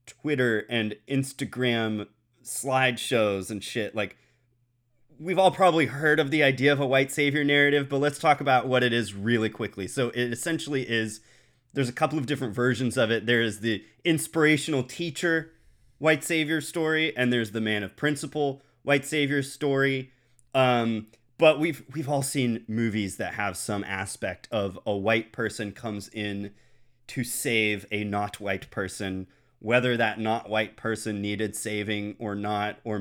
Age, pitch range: 30-49, 110-145 Hz